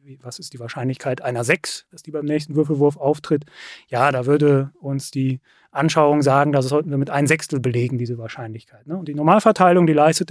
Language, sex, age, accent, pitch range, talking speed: German, male, 30-49, German, 145-180 Hz, 185 wpm